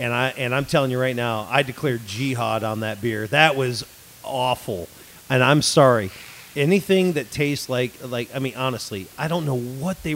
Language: English